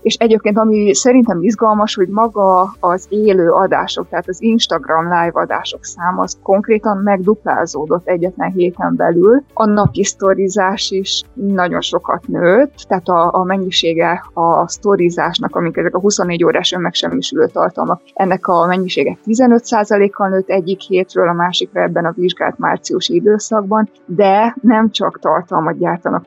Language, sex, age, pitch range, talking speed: Hungarian, female, 20-39, 180-215 Hz, 135 wpm